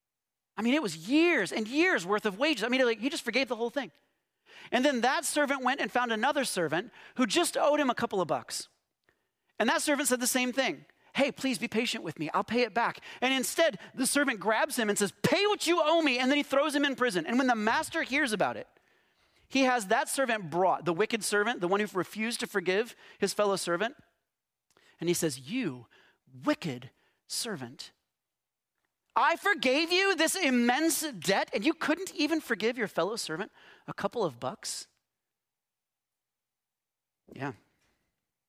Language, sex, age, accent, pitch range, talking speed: English, male, 40-59, American, 185-275 Hz, 190 wpm